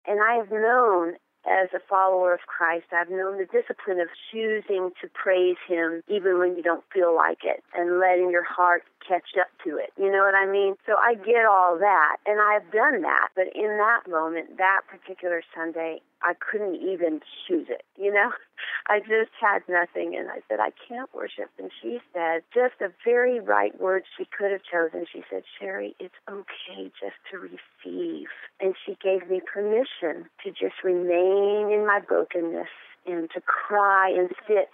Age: 40-59